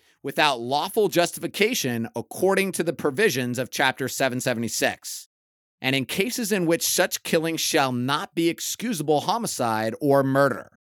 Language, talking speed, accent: English, 130 wpm, American